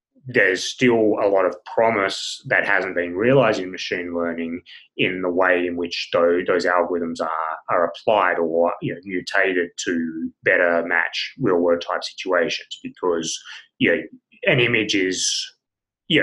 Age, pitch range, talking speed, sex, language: 30-49, 85-100 Hz, 145 wpm, male, English